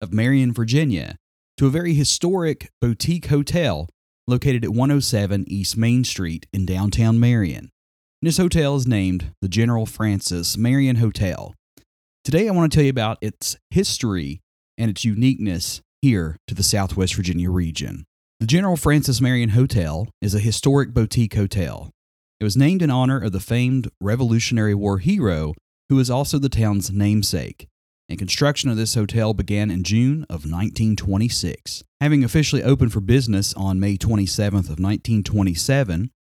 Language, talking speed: English, 150 wpm